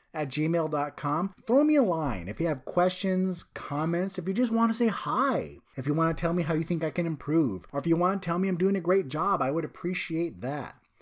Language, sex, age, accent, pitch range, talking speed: English, male, 30-49, American, 130-165 Hz, 250 wpm